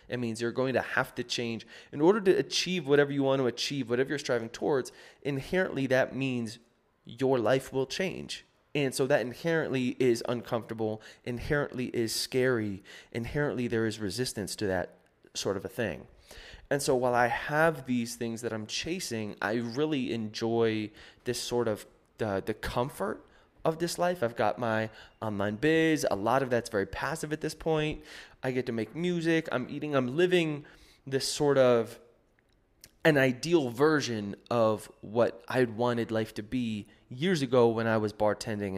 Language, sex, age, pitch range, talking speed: English, male, 20-39, 110-135 Hz, 175 wpm